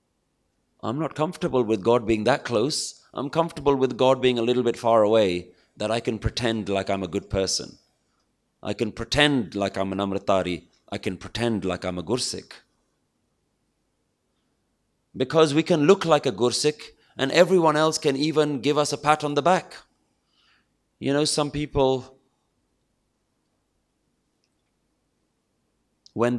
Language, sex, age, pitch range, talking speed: English, male, 30-49, 110-145 Hz, 150 wpm